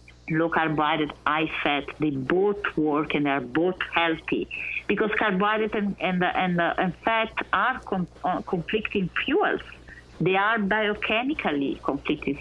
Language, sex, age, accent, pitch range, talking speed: English, female, 50-69, Italian, 155-200 Hz, 130 wpm